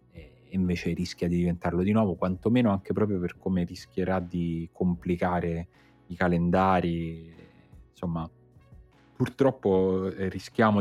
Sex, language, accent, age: male, Italian, native, 30-49